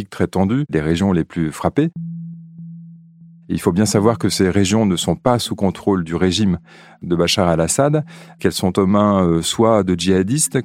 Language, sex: French, male